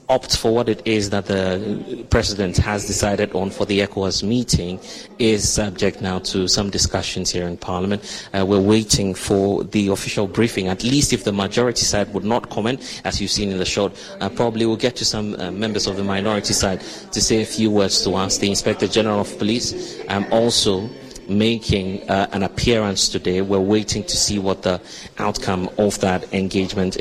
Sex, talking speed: male, 190 wpm